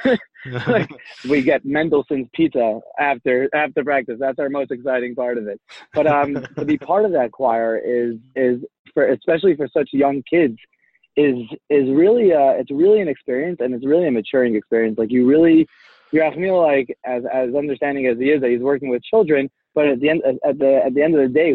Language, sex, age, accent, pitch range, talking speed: English, male, 20-39, American, 115-140 Hz, 205 wpm